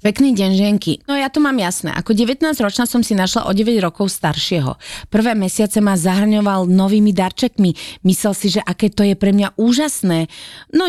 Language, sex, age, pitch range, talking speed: Slovak, female, 30-49, 180-240 Hz, 175 wpm